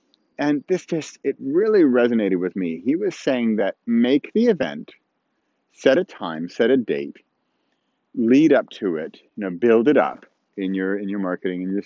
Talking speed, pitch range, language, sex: 185 wpm, 110-170 Hz, English, male